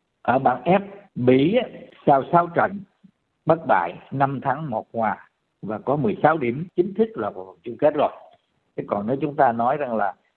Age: 50-69